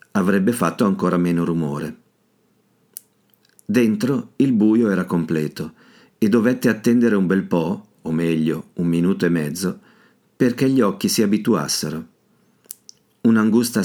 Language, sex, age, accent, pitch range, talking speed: Italian, male, 50-69, native, 85-105 Hz, 120 wpm